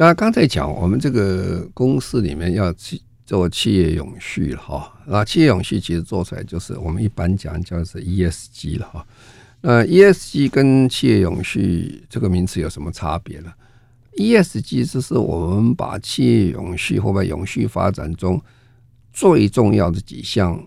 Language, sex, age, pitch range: Chinese, male, 50-69, 90-120 Hz